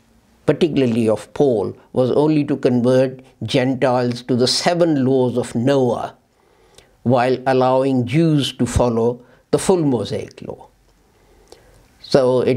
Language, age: English, 60-79